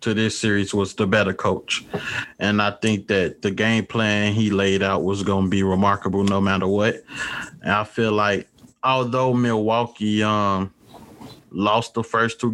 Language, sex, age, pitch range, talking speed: English, male, 20-39, 100-115 Hz, 170 wpm